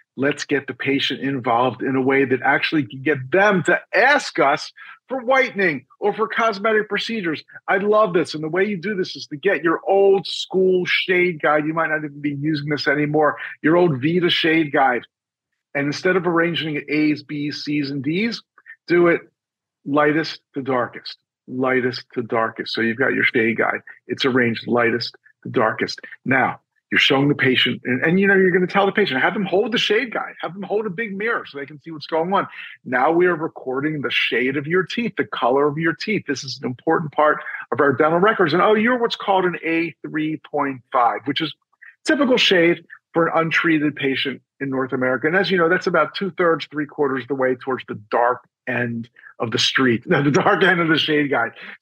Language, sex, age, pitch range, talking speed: English, male, 50-69, 140-195 Hz, 210 wpm